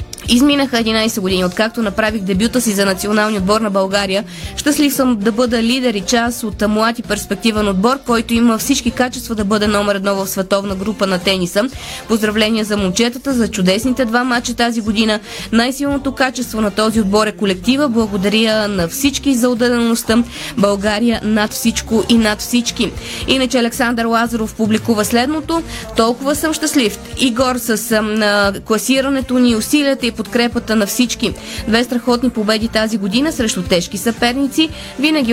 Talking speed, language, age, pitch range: 155 wpm, Bulgarian, 20-39, 210-245 Hz